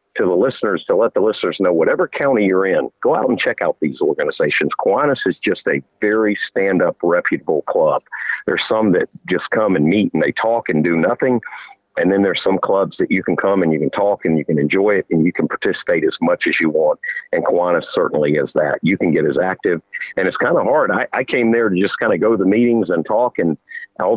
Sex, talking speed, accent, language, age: male, 245 wpm, American, English, 50-69